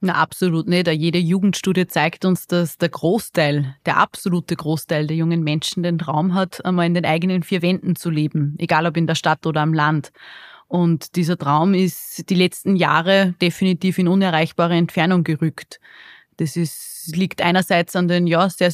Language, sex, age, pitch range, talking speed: German, female, 20-39, 170-195 Hz, 180 wpm